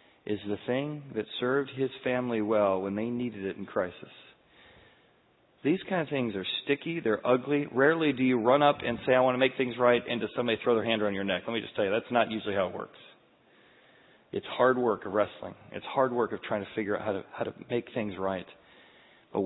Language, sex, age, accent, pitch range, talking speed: English, male, 40-59, American, 110-150 Hz, 235 wpm